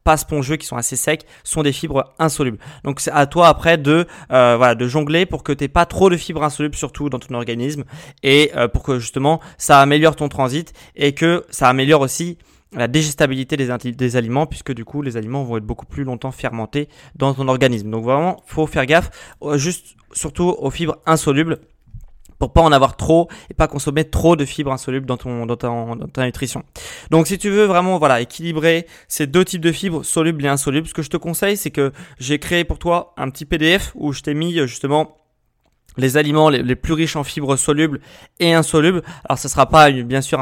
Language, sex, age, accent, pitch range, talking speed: French, male, 20-39, French, 130-160 Hz, 215 wpm